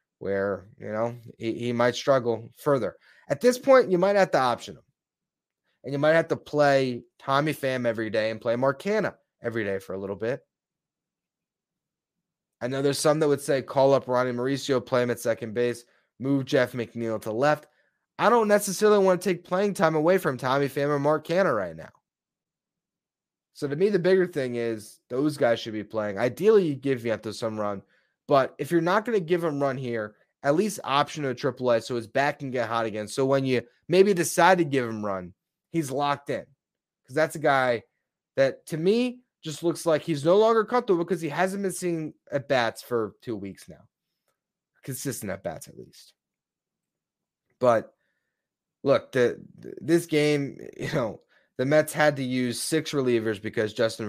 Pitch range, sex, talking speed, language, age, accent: 115-165 Hz, male, 195 wpm, English, 20-39, American